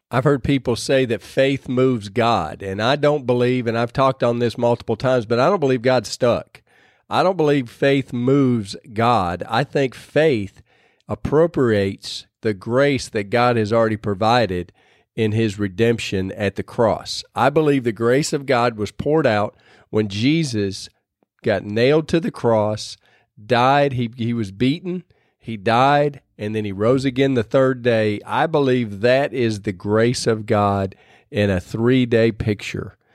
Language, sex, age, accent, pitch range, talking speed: English, male, 40-59, American, 105-130 Hz, 165 wpm